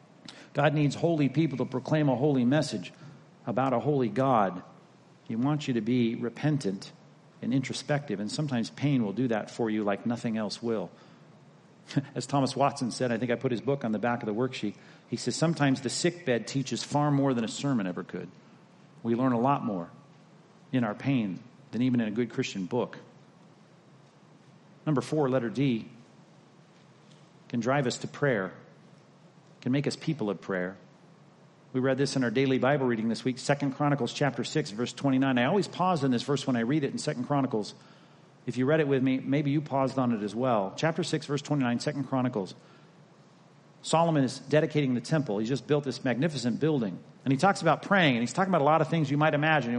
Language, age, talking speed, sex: English, 40-59, 200 wpm, male